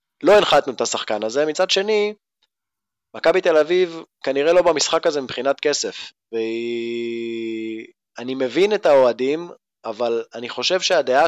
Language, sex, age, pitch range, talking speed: Hebrew, male, 20-39, 125-170 Hz, 135 wpm